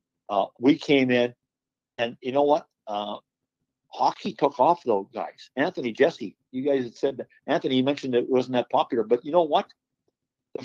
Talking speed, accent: 185 wpm, American